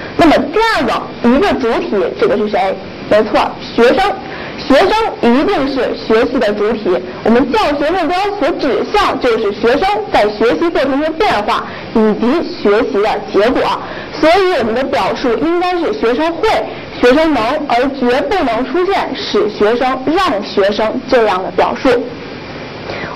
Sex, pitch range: female, 230-360 Hz